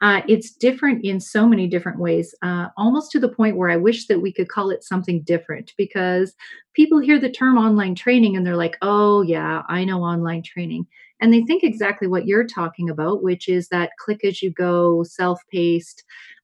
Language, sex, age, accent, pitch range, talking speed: English, female, 40-59, American, 175-220 Hz, 200 wpm